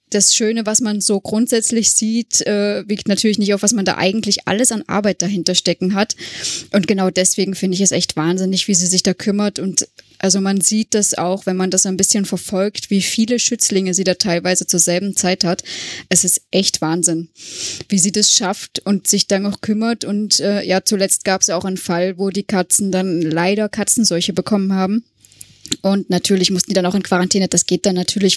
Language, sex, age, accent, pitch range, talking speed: German, female, 20-39, German, 185-205 Hz, 210 wpm